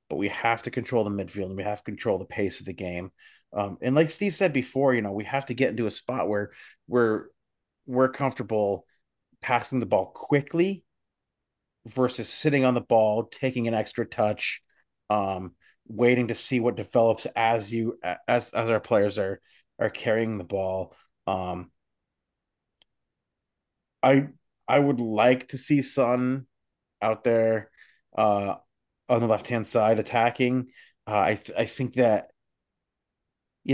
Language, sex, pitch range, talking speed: English, male, 105-125 Hz, 160 wpm